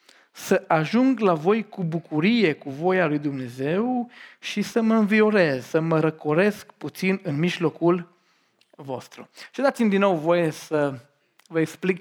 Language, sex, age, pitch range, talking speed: Romanian, male, 40-59, 150-195 Hz, 145 wpm